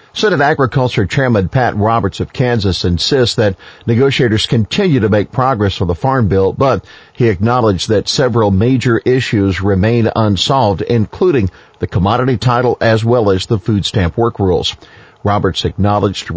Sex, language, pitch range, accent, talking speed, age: male, English, 95-120 Hz, American, 155 wpm, 50-69